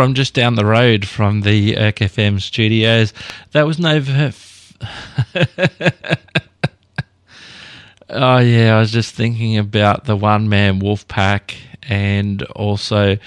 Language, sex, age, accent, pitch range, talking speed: English, male, 20-39, Australian, 105-125 Hz, 120 wpm